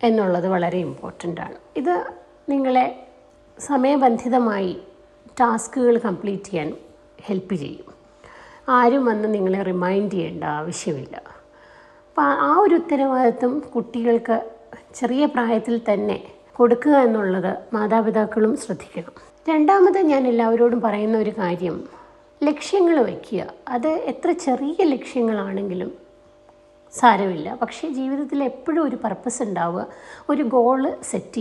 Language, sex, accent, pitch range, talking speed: Malayalam, female, native, 205-265 Hz, 100 wpm